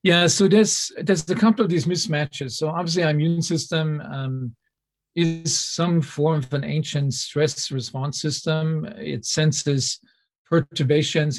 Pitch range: 135-165 Hz